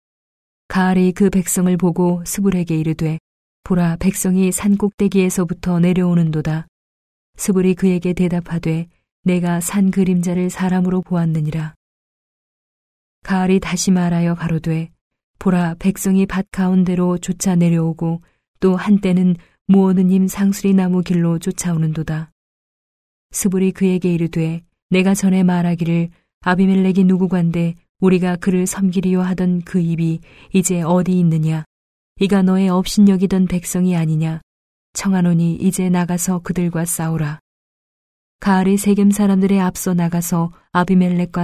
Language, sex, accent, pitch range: Korean, female, native, 170-185 Hz